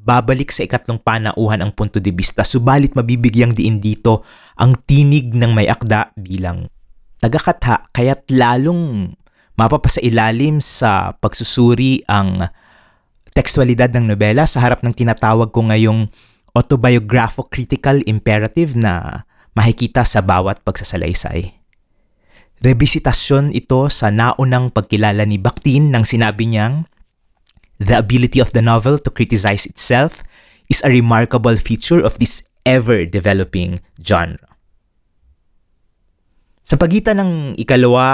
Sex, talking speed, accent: male, 110 wpm, Filipino